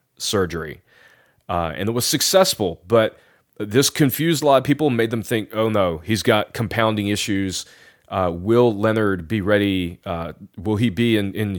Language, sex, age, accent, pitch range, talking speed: English, male, 30-49, American, 95-130 Hz, 170 wpm